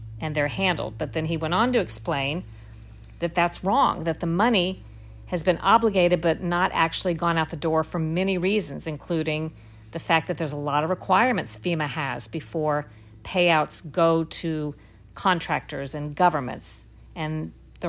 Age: 50-69